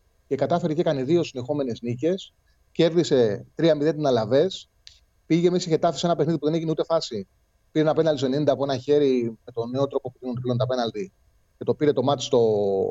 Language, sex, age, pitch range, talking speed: Greek, male, 30-49, 135-190 Hz, 195 wpm